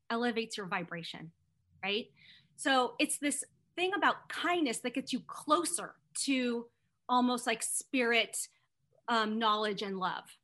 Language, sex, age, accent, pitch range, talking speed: English, female, 30-49, American, 210-280 Hz, 125 wpm